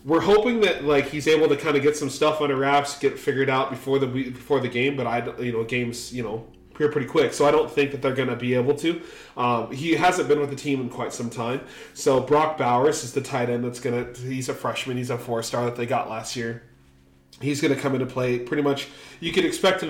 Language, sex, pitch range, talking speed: English, male, 120-145 Hz, 270 wpm